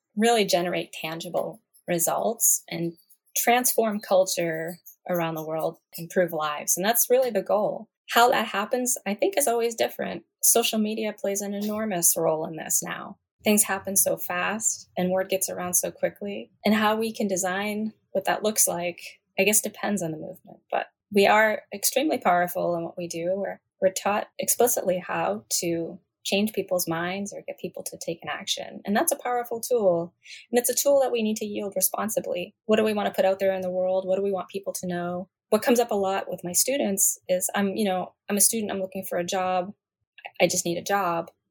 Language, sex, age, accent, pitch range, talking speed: English, female, 20-39, American, 180-215 Hz, 205 wpm